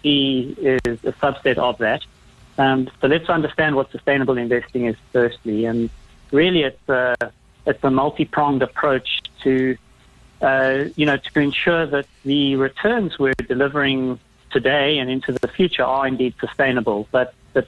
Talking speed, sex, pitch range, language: 145 wpm, male, 125-145 Hz, English